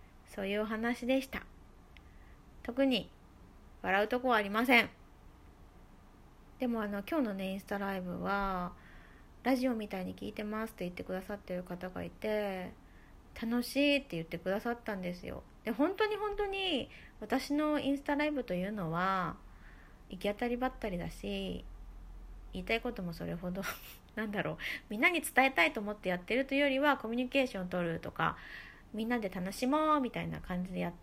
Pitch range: 175-255 Hz